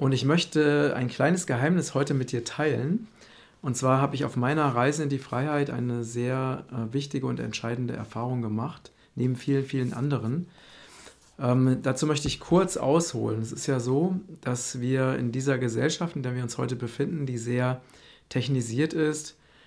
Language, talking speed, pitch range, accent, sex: German, 175 wpm, 125-145 Hz, German, male